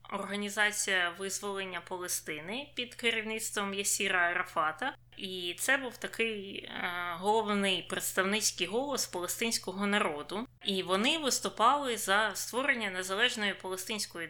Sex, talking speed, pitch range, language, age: female, 95 wpm, 185-230 Hz, Ukrainian, 20-39